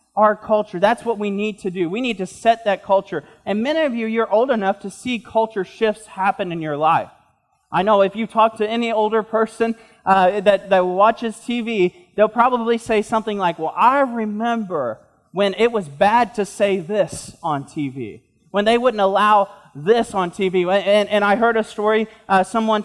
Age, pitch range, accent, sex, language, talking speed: 20-39, 190-230 Hz, American, male, English, 195 wpm